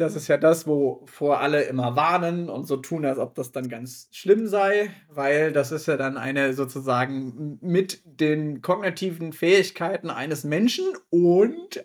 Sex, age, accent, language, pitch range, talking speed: male, 30-49, German, German, 140-175 Hz, 165 wpm